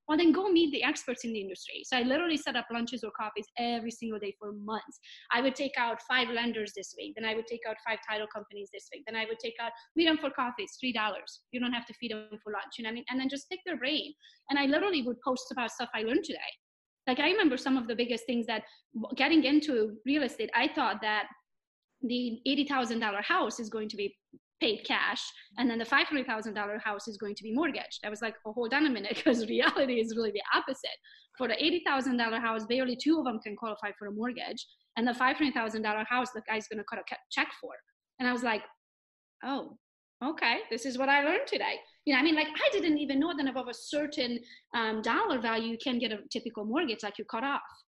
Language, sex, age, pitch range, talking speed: English, female, 20-39, 225-280 Hz, 245 wpm